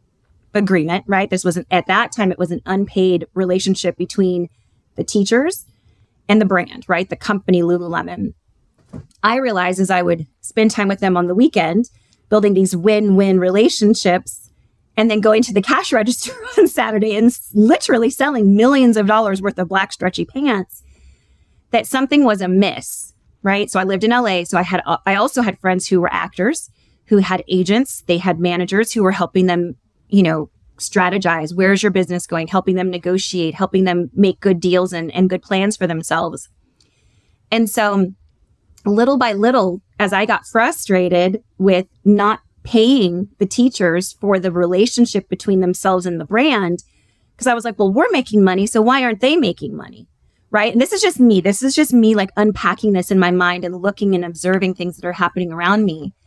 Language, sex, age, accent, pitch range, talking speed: English, female, 30-49, American, 180-215 Hz, 185 wpm